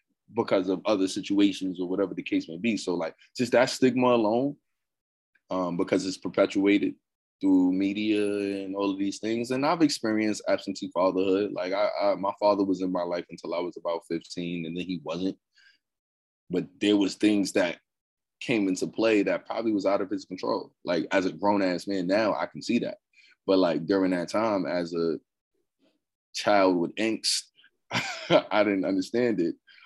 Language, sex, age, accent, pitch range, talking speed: English, male, 20-39, American, 90-105 Hz, 180 wpm